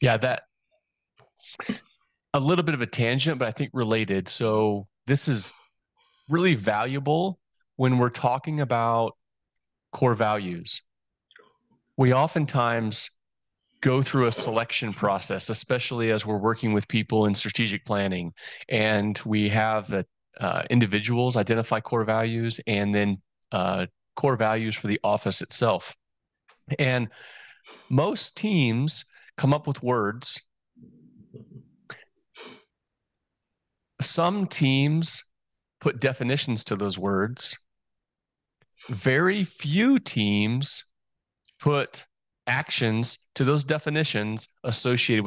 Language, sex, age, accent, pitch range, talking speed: English, male, 30-49, American, 110-140 Hz, 105 wpm